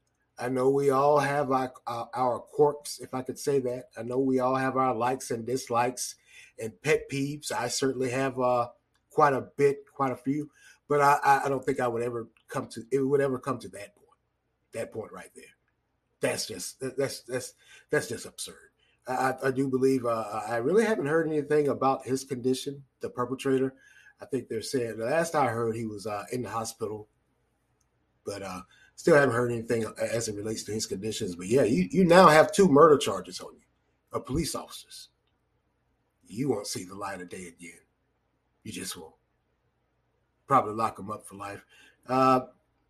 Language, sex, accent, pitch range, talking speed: English, male, American, 125-150 Hz, 190 wpm